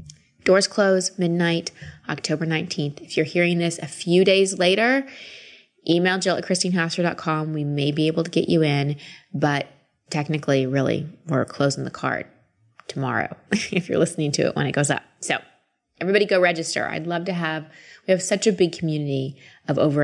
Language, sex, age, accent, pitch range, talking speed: English, female, 20-39, American, 145-180 Hz, 175 wpm